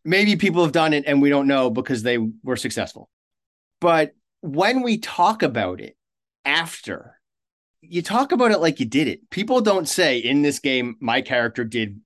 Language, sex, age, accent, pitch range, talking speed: English, male, 30-49, American, 110-150 Hz, 185 wpm